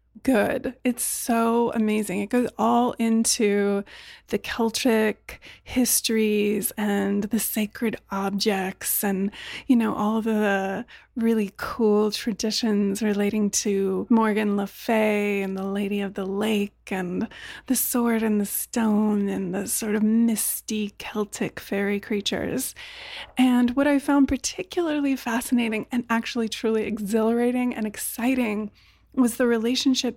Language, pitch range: English, 210-240 Hz